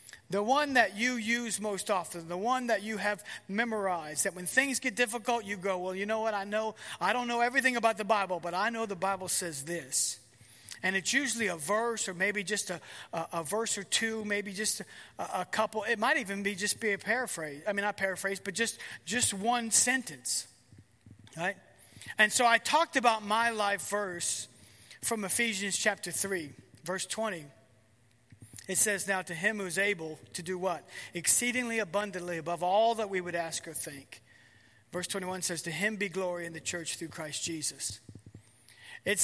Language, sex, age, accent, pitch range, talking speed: English, male, 40-59, American, 160-220 Hz, 195 wpm